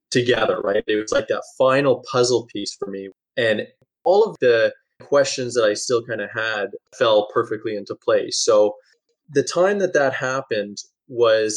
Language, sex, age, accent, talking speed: English, male, 20-39, American, 170 wpm